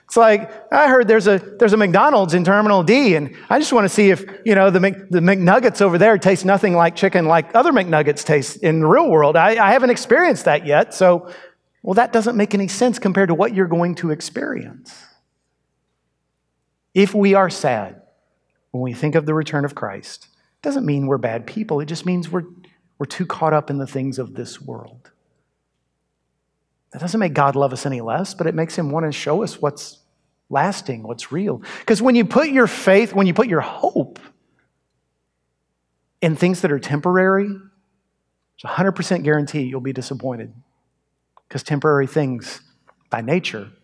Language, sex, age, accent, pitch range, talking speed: English, male, 40-59, American, 140-195 Hz, 190 wpm